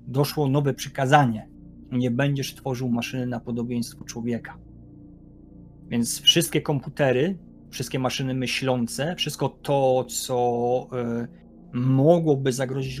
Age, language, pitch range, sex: 30-49, Polish, 120-135 Hz, male